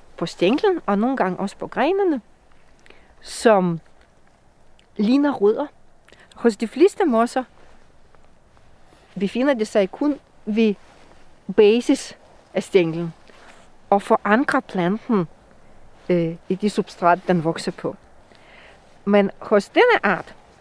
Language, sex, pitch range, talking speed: Danish, female, 180-240 Hz, 110 wpm